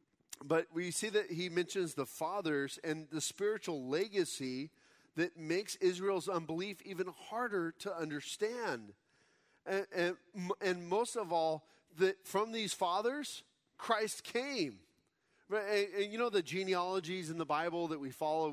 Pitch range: 140-180 Hz